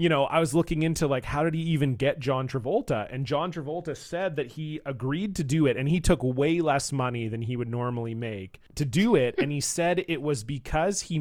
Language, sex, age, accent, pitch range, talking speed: English, male, 30-49, American, 125-155 Hz, 240 wpm